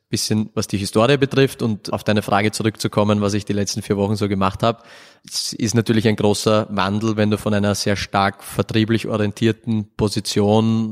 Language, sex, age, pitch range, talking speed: German, male, 20-39, 100-110 Hz, 185 wpm